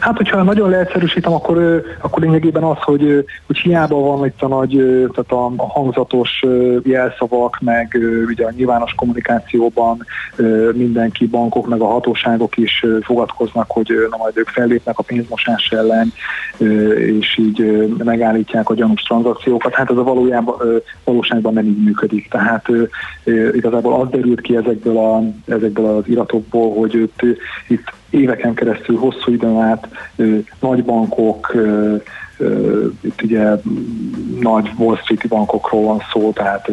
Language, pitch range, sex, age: Hungarian, 110-120 Hz, male, 30-49